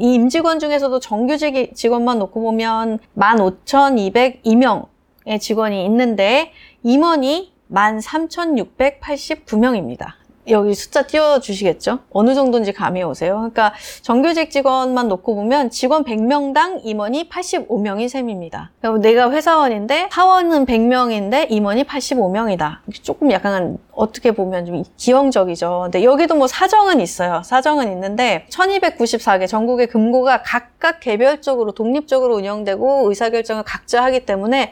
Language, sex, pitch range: Korean, female, 210-275 Hz